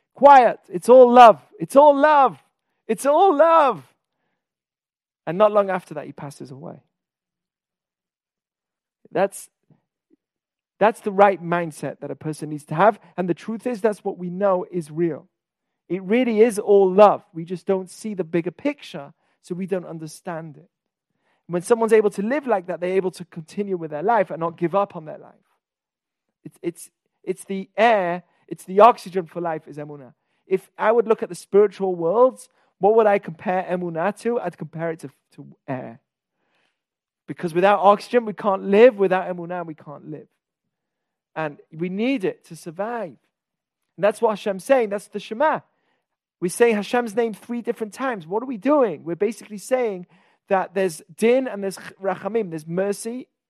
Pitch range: 175-225 Hz